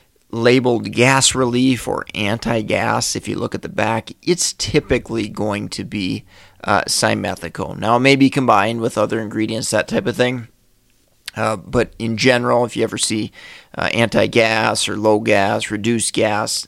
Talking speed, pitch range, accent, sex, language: 160 wpm, 110-130 Hz, American, male, English